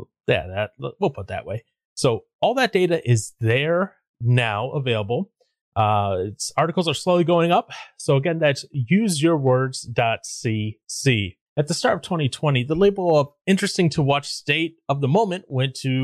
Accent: American